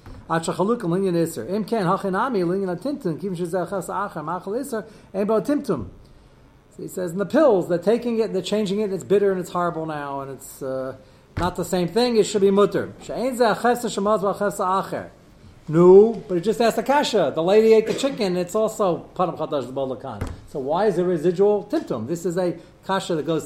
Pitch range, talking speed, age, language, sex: 145-205 Hz, 140 wpm, 40-59, English, male